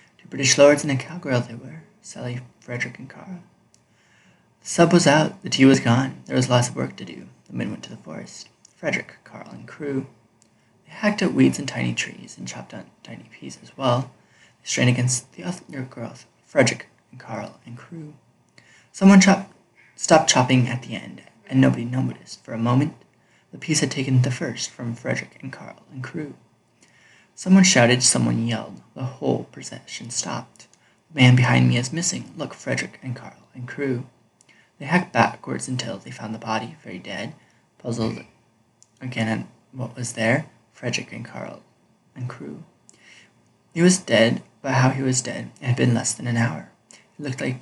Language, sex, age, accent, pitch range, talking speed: English, male, 20-39, American, 120-145 Hz, 180 wpm